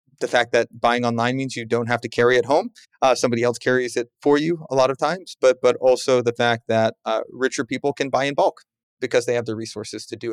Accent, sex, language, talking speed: American, male, English, 255 wpm